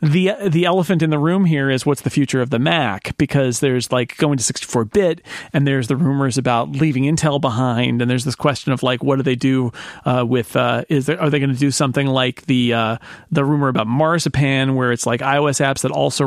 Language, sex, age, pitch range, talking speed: English, male, 40-59, 130-170 Hz, 230 wpm